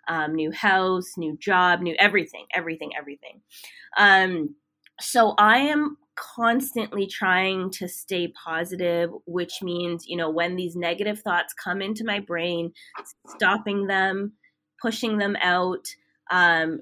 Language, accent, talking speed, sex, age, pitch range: English, American, 130 wpm, female, 20-39, 170-205 Hz